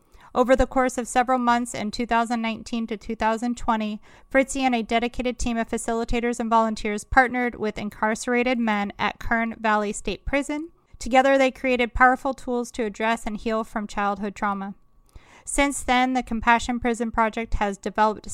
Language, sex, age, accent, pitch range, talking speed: English, female, 30-49, American, 210-245 Hz, 155 wpm